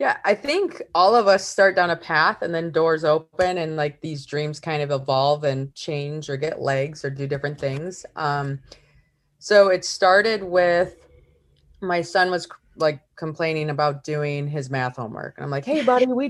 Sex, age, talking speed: female, 20-39, 190 wpm